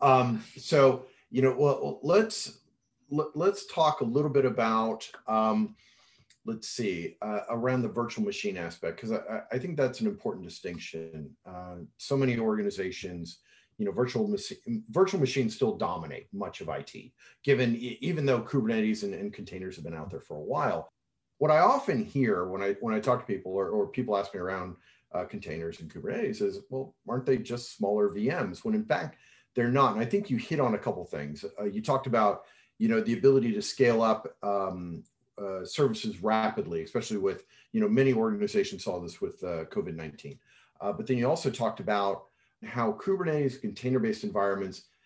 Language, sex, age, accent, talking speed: English, male, 40-59, American, 185 wpm